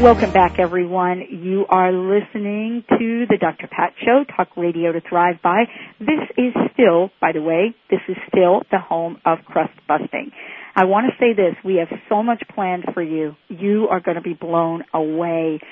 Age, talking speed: 50-69, 185 wpm